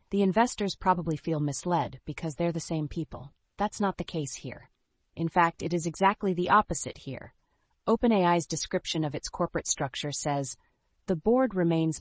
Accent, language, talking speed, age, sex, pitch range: American, English, 165 wpm, 30-49, female, 140-170 Hz